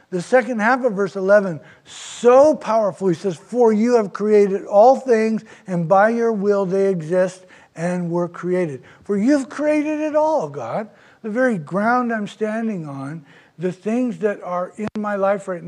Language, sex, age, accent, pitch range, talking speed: English, male, 60-79, American, 150-205 Hz, 170 wpm